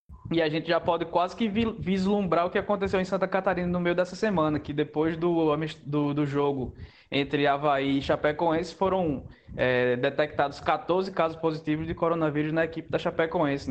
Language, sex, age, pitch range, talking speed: Portuguese, male, 20-39, 145-185 Hz, 170 wpm